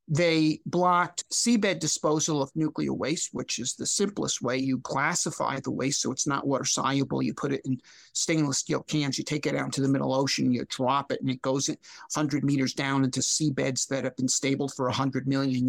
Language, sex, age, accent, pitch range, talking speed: English, male, 50-69, American, 145-195 Hz, 215 wpm